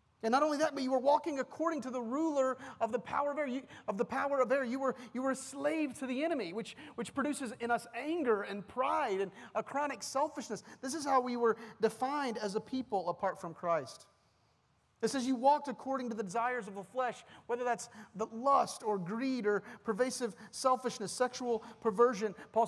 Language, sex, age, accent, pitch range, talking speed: English, male, 40-59, American, 180-250 Hz, 210 wpm